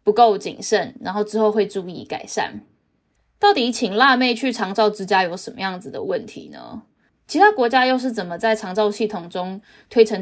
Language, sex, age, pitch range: Chinese, female, 10-29, 195-250 Hz